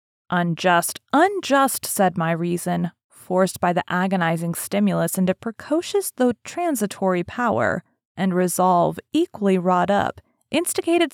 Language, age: English, 20-39